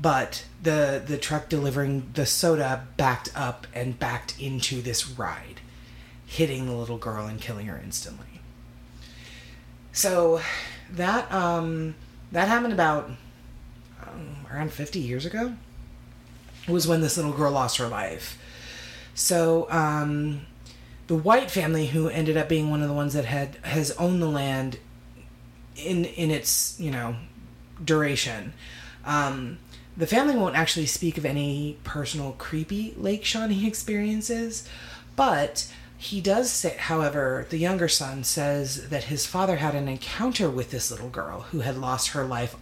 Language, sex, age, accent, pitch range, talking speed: English, female, 30-49, American, 120-165 Hz, 145 wpm